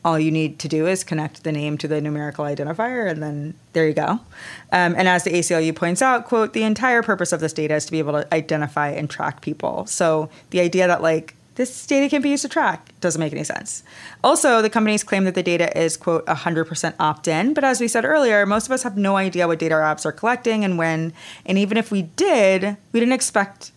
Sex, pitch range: female, 165-215 Hz